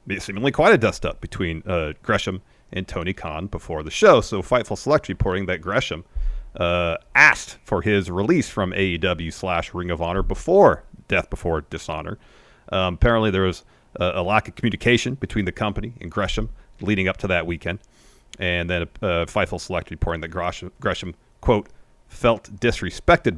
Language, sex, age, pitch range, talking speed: English, male, 40-59, 85-105 Hz, 165 wpm